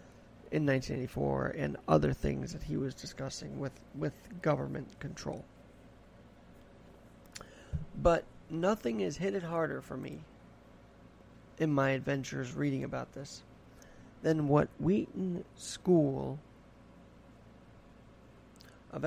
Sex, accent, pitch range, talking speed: male, American, 130-165 Hz, 100 wpm